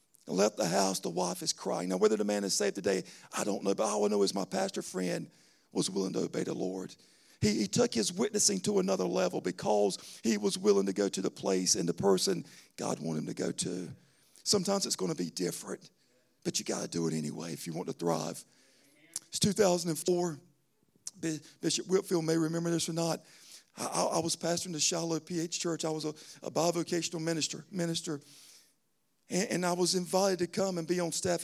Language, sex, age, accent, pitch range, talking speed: English, male, 50-69, American, 155-200 Hz, 210 wpm